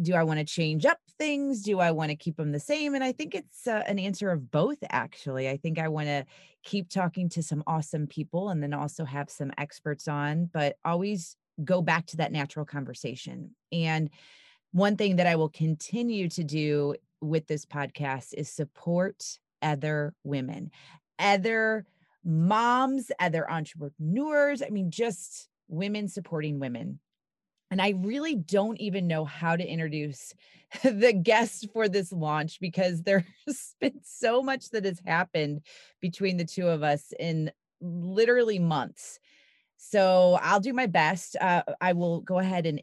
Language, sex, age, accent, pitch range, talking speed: English, female, 30-49, American, 155-200 Hz, 165 wpm